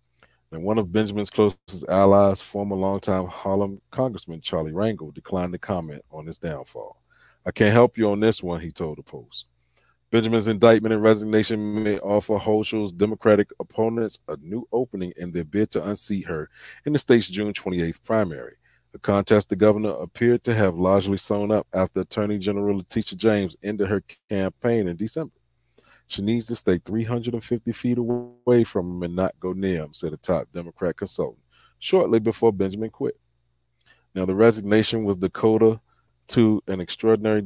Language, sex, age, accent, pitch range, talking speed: English, male, 30-49, American, 90-110 Hz, 165 wpm